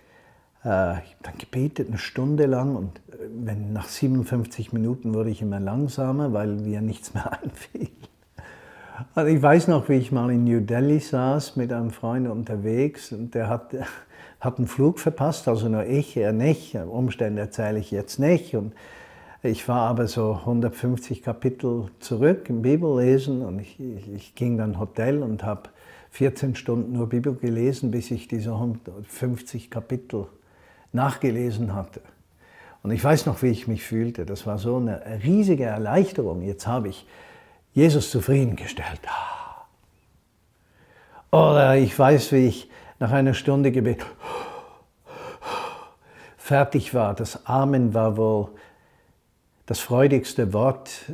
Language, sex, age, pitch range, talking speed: German, male, 50-69, 110-135 Hz, 135 wpm